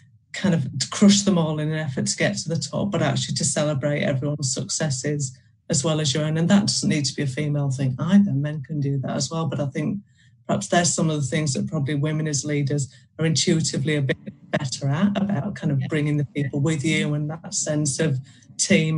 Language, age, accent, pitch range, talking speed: English, 30-49, British, 145-180 Hz, 230 wpm